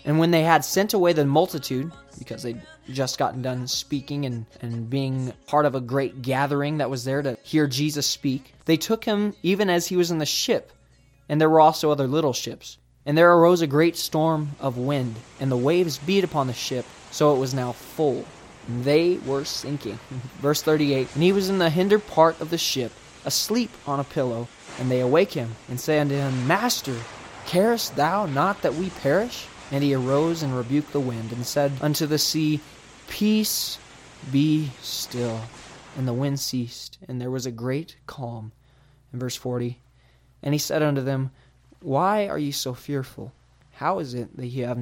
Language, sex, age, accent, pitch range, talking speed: English, male, 20-39, American, 125-160 Hz, 195 wpm